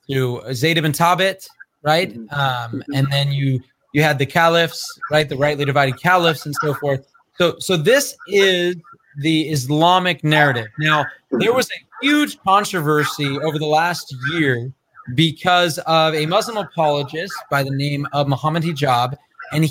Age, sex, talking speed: 30-49, male, 150 wpm